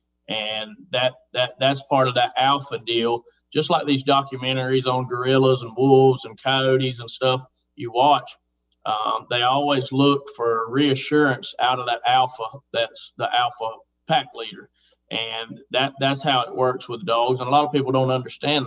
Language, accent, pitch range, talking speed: English, American, 120-140 Hz, 170 wpm